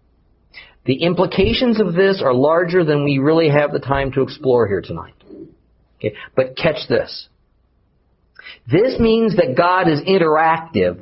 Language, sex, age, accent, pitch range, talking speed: English, male, 50-69, American, 100-145 Hz, 135 wpm